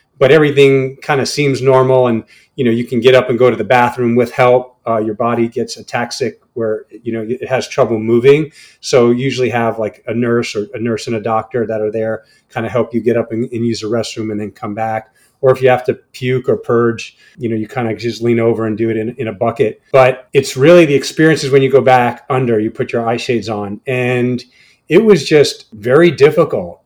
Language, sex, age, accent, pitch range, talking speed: English, male, 30-49, American, 115-135 Hz, 240 wpm